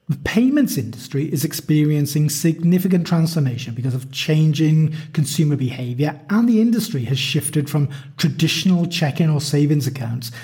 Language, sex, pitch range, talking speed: English, male, 135-185 Hz, 130 wpm